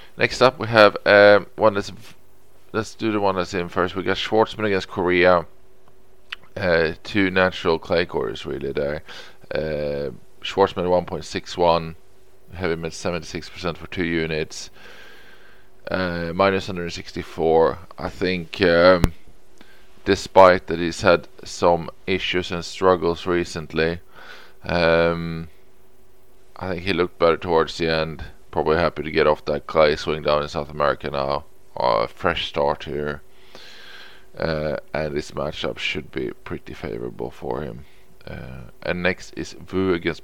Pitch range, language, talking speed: 80-95 Hz, English, 150 wpm